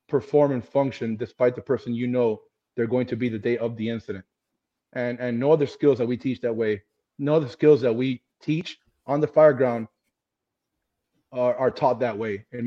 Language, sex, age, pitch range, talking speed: English, male, 30-49, 110-125 Hz, 205 wpm